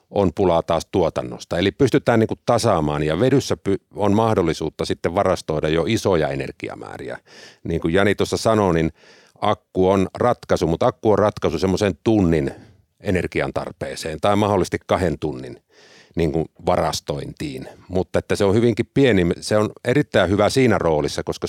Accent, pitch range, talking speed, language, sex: native, 80-105 Hz, 145 wpm, Finnish, male